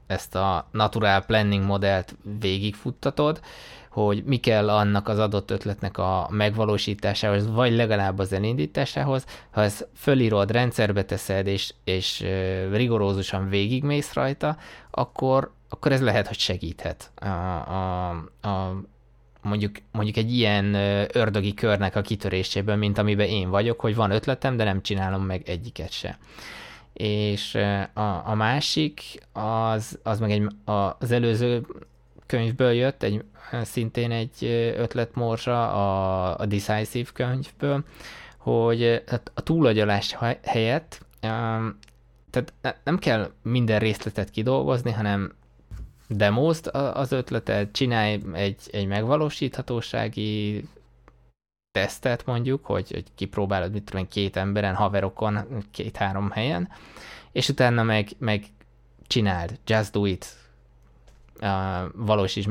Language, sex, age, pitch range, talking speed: Hungarian, male, 20-39, 100-120 Hz, 110 wpm